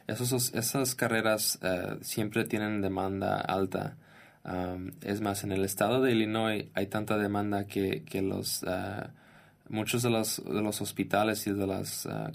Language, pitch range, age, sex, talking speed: Spanish, 95-110 Hz, 20-39, male, 160 wpm